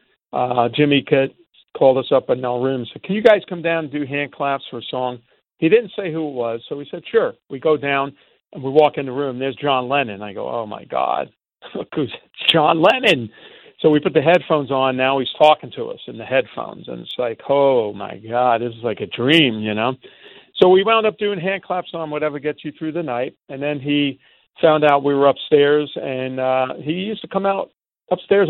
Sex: male